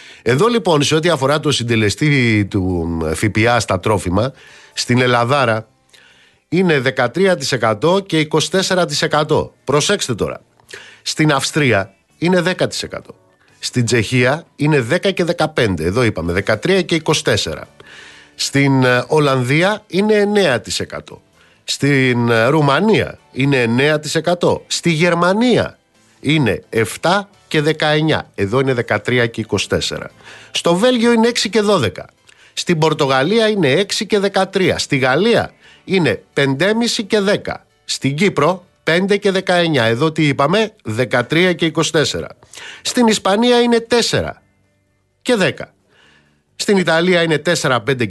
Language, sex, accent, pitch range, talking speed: Greek, male, native, 120-190 Hz, 115 wpm